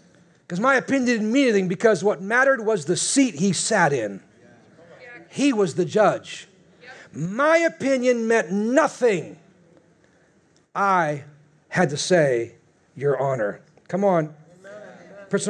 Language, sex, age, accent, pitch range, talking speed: English, male, 40-59, American, 160-225 Hz, 125 wpm